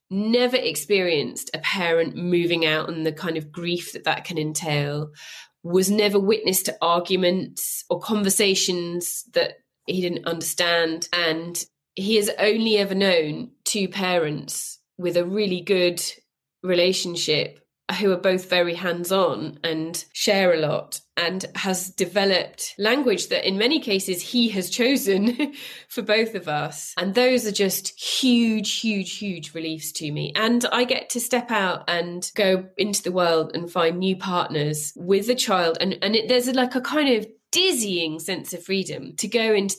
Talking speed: 160 wpm